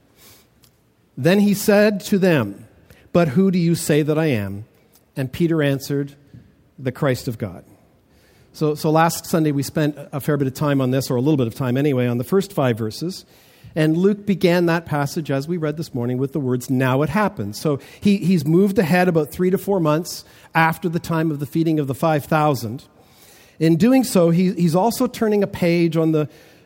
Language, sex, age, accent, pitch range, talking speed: English, male, 50-69, American, 140-190 Hz, 205 wpm